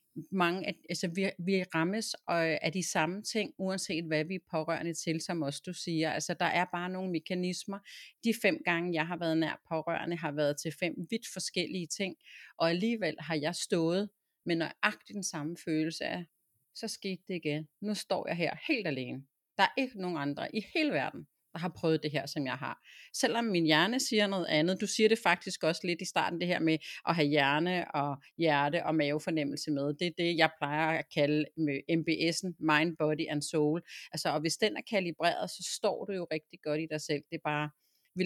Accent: native